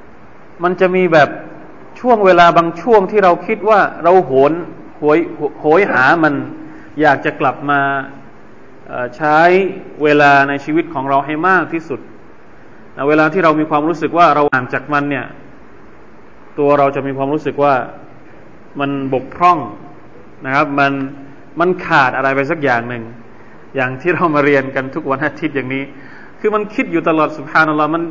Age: 20-39